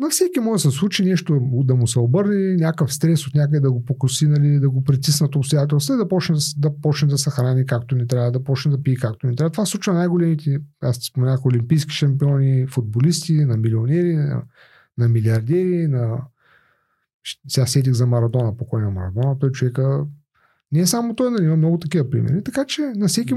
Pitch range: 135-180 Hz